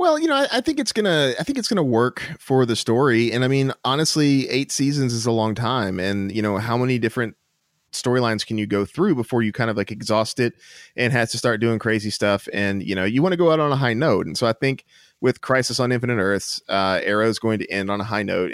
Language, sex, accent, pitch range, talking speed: English, male, American, 110-140 Hz, 270 wpm